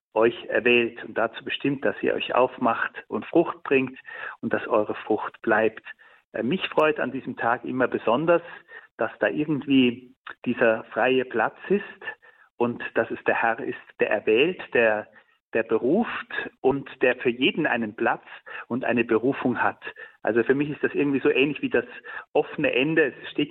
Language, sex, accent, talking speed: German, male, German, 170 wpm